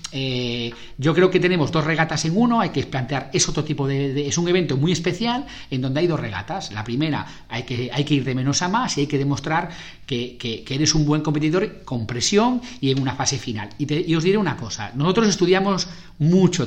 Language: Spanish